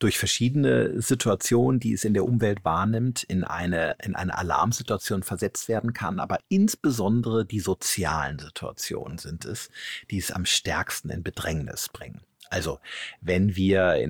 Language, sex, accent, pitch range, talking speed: German, male, German, 95-115 Hz, 150 wpm